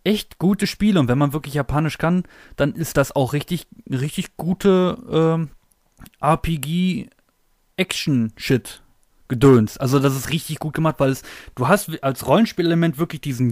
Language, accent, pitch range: German, German, 125-160 Hz